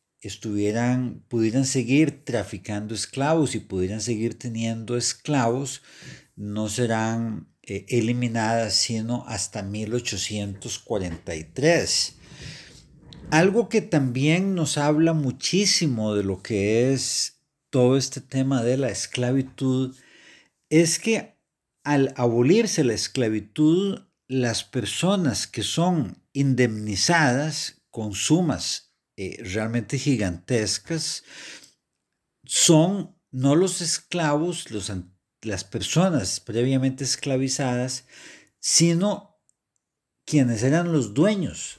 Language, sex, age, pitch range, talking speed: Spanish, male, 50-69, 110-150 Hz, 90 wpm